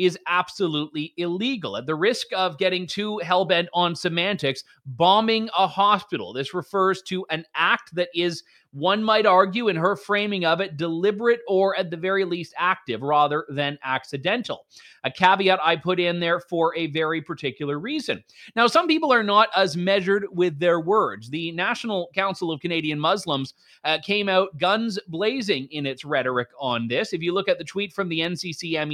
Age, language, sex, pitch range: 30-49, English, male, 160-200 Hz